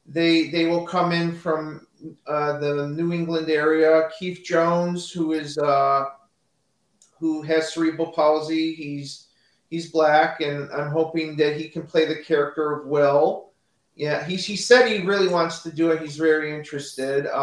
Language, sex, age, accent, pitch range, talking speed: English, male, 40-59, American, 145-170 Hz, 160 wpm